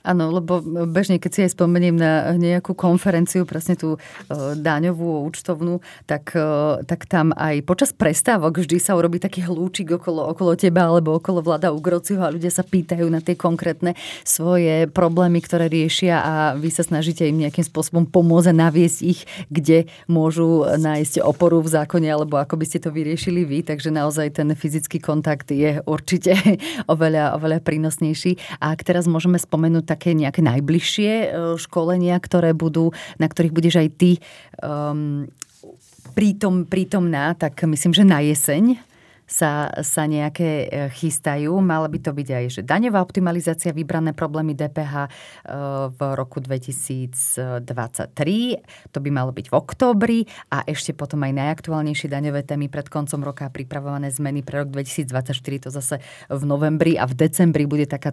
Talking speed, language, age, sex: 155 wpm, Slovak, 30-49, female